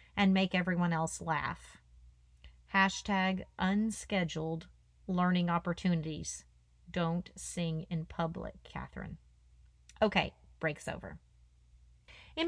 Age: 30-49